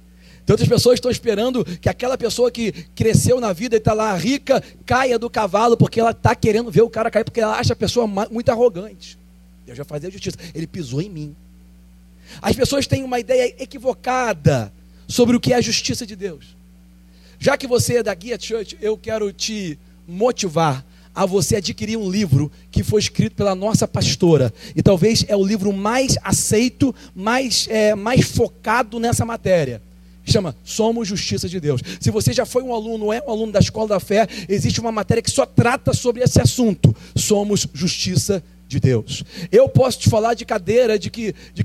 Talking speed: 185 wpm